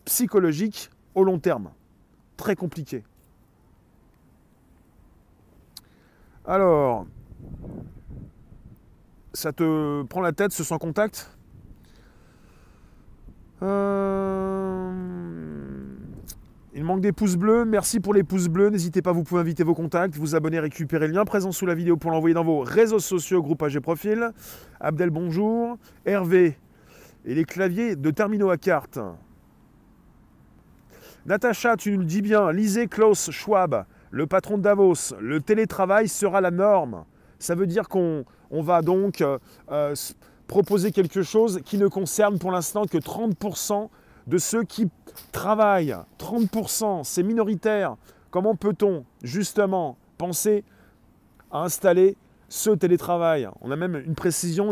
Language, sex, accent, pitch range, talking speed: French, male, French, 160-205 Hz, 130 wpm